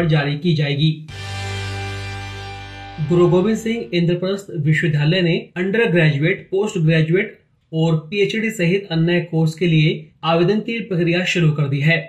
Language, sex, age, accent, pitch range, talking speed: Hindi, male, 30-49, native, 155-185 Hz, 135 wpm